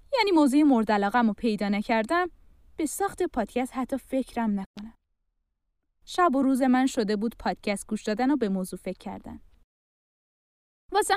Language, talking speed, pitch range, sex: Persian, 145 wpm, 220-320 Hz, female